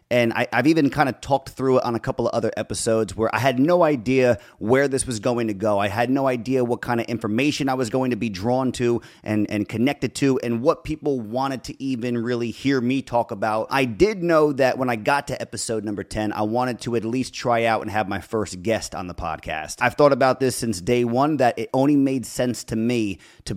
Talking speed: 245 wpm